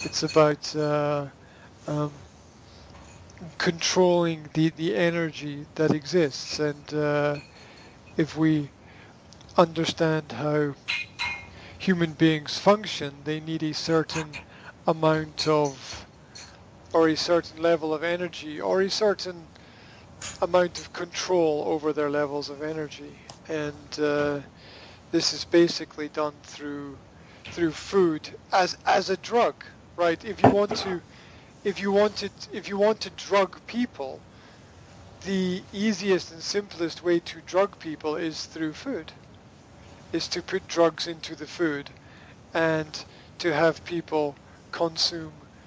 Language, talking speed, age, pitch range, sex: English, 120 wpm, 50-69, 145-170 Hz, male